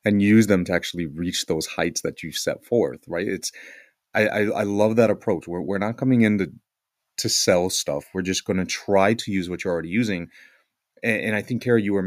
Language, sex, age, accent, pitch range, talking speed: English, male, 30-49, American, 90-115 Hz, 230 wpm